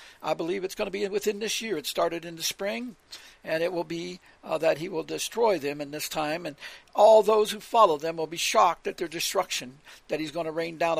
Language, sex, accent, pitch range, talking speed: English, male, American, 165-210 Hz, 245 wpm